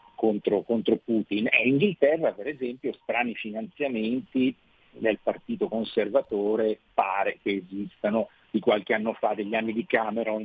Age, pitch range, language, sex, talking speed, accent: 50-69, 105-130 Hz, Italian, male, 130 wpm, native